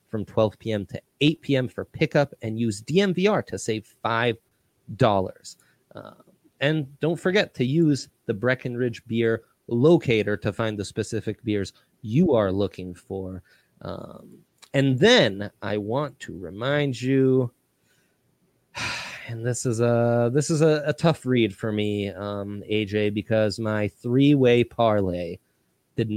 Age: 30-49